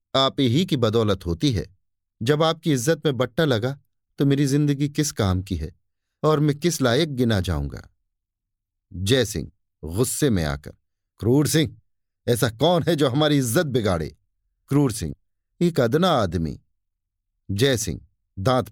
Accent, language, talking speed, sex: native, Hindi, 150 wpm, male